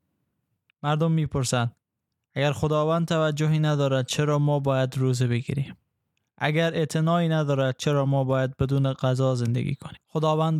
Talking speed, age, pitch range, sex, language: 125 wpm, 10-29, 130-150 Hz, male, Persian